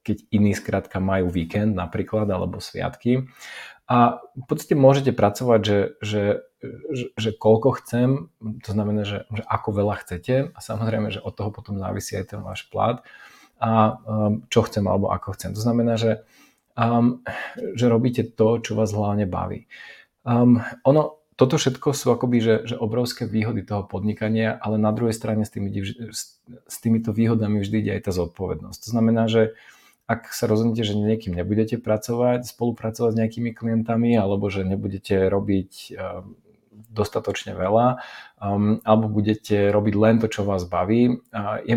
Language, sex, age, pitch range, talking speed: Slovak, male, 40-59, 100-115 Hz, 160 wpm